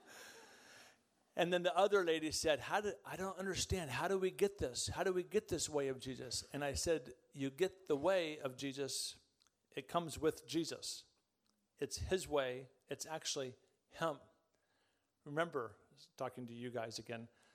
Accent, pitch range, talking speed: American, 135-175 Hz, 170 wpm